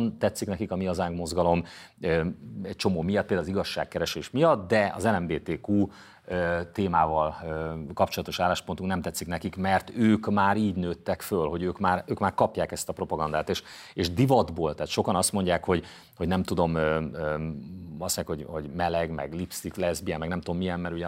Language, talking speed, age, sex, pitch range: Hungarian, 180 wpm, 30-49, male, 85-100 Hz